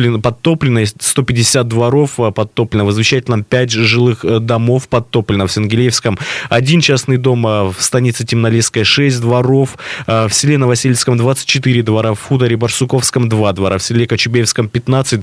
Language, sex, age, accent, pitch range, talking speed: Russian, male, 20-39, native, 115-135 Hz, 135 wpm